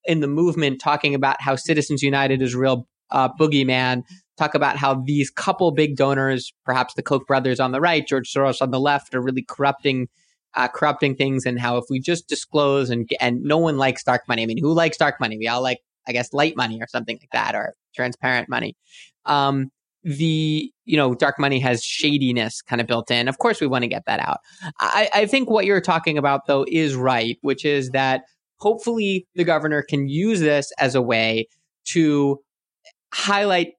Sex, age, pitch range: male, 20-39, 130-160 Hz